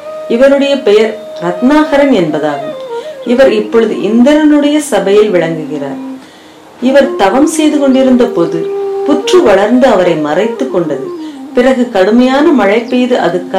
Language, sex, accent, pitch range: Tamil, female, native, 215-305 Hz